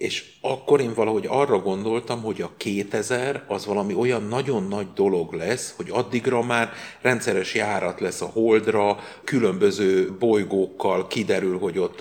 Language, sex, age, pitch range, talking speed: Hungarian, male, 50-69, 105-150 Hz, 145 wpm